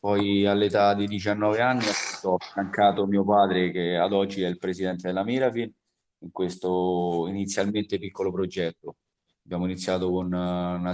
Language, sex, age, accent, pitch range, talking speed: Italian, male, 20-39, native, 90-100 Hz, 145 wpm